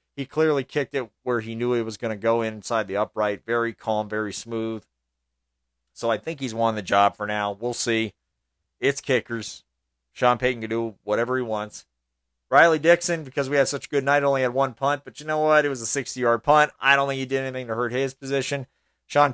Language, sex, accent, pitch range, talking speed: English, male, American, 95-135 Hz, 225 wpm